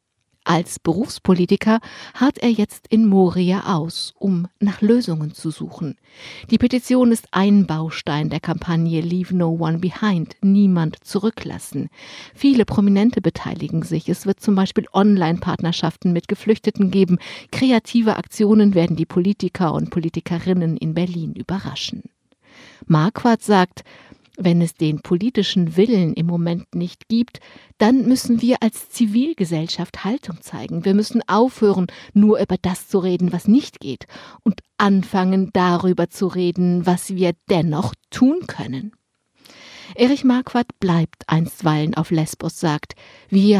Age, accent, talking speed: 50-69, German, 130 wpm